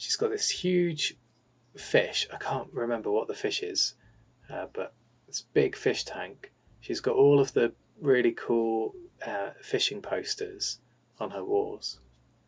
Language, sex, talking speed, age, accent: English, male, 150 wpm, 20-39, British